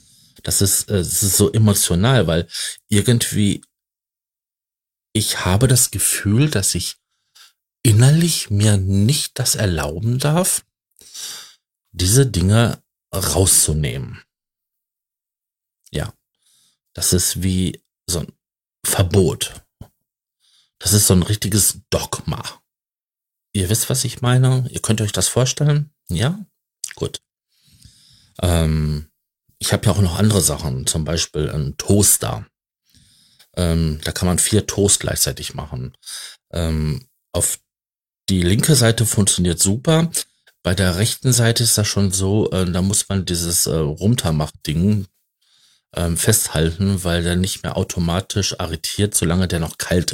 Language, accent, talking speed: German, German, 125 wpm